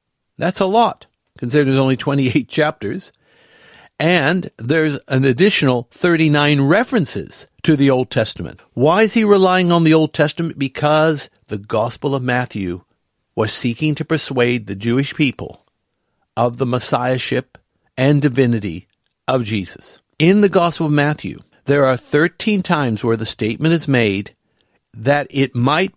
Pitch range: 120-160 Hz